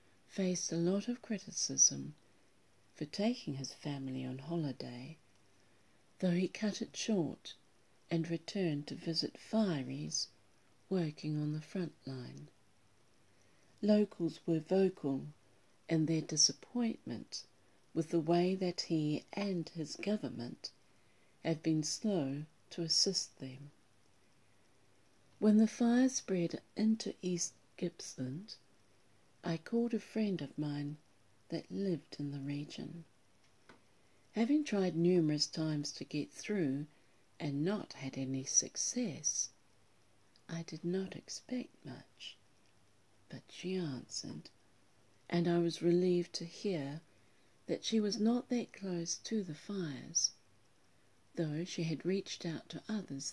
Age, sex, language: 50-69, female, English